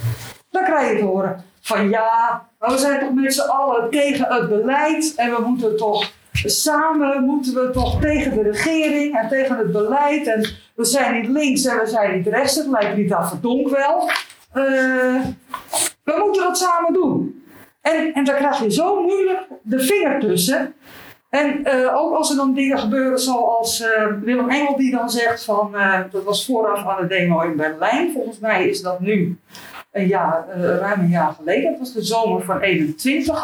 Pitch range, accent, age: 220-285 Hz, Dutch, 50-69